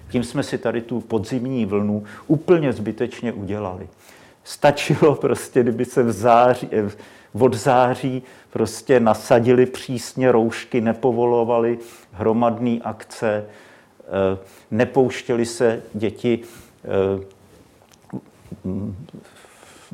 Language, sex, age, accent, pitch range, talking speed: Czech, male, 50-69, native, 105-125 Hz, 95 wpm